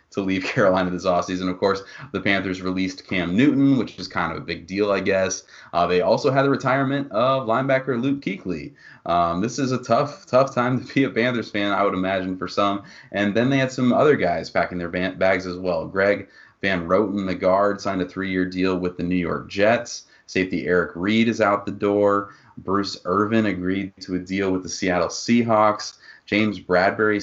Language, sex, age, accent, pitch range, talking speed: English, male, 30-49, American, 95-110 Hz, 205 wpm